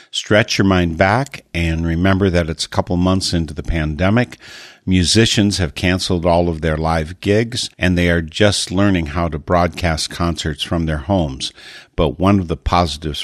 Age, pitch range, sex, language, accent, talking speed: 50-69, 80-100 Hz, male, English, American, 175 wpm